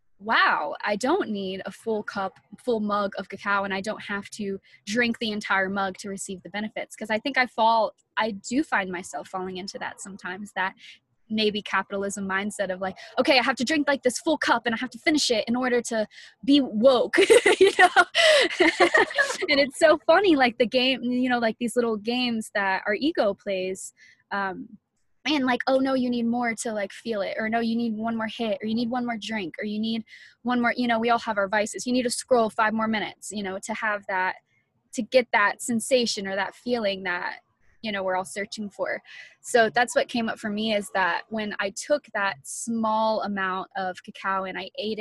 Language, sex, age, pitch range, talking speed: English, female, 20-39, 195-240 Hz, 220 wpm